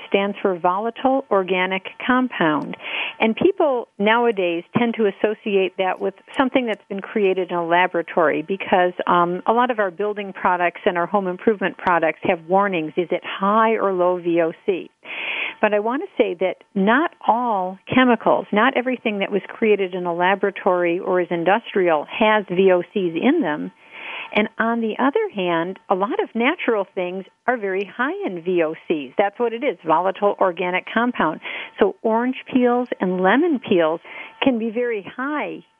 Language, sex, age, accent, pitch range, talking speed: English, female, 50-69, American, 185-230 Hz, 165 wpm